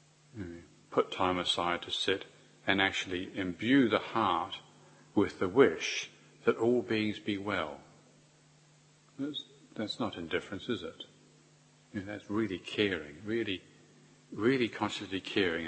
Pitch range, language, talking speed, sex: 80-105 Hz, English, 125 wpm, male